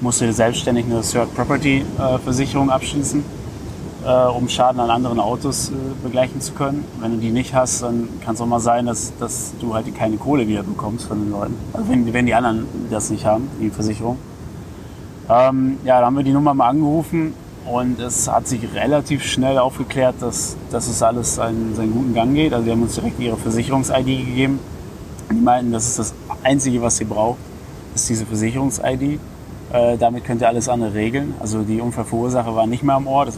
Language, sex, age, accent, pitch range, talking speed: German, male, 30-49, German, 110-130 Hz, 200 wpm